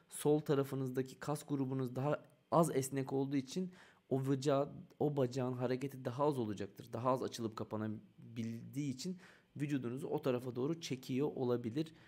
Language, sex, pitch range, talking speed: Turkish, male, 115-140 Hz, 140 wpm